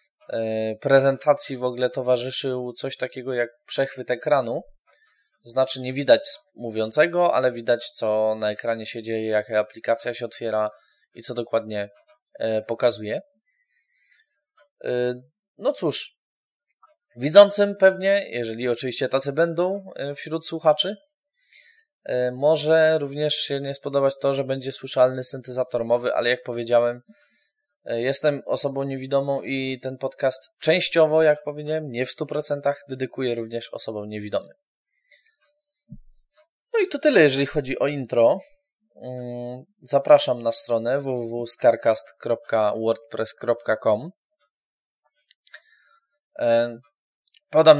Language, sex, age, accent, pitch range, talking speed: Polish, male, 20-39, native, 120-185 Hz, 105 wpm